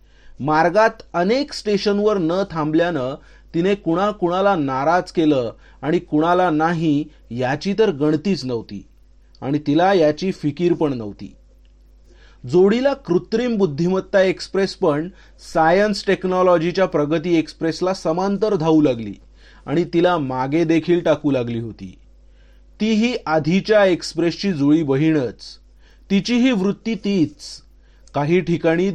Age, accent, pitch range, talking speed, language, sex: 40-59, native, 155-195 Hz, 105 wpm, Marathi, male